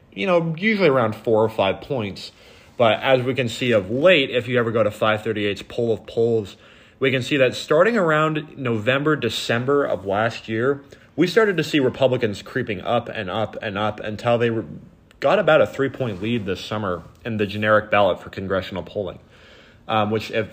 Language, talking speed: English, 195 wpm